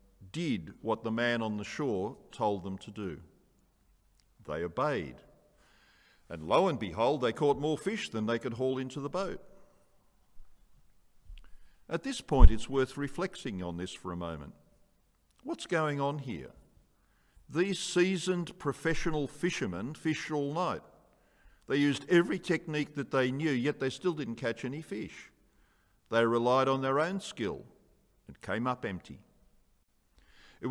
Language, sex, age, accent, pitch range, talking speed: English, male, 50-69, Australian, 110-155 Hz, 145 wpm